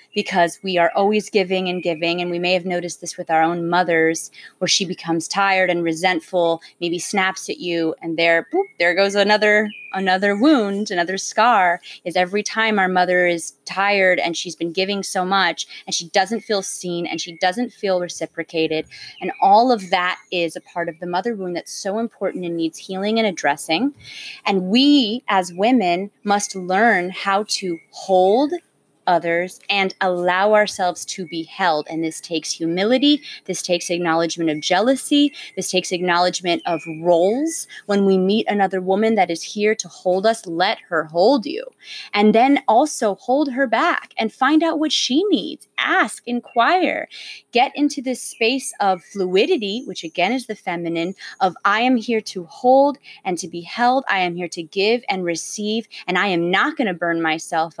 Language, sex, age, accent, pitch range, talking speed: English, female, 20-39, American, 175-220 Hz, 180 wpm